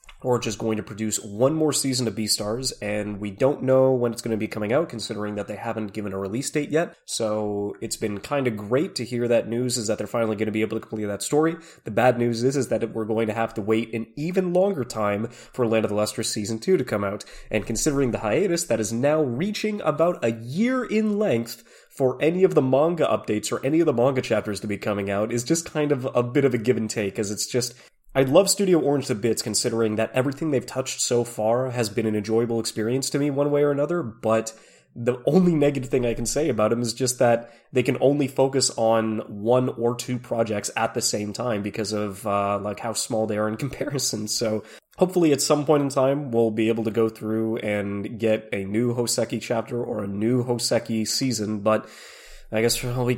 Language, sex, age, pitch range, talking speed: English, male, 20-39, 110-135 Hz, 235 wpm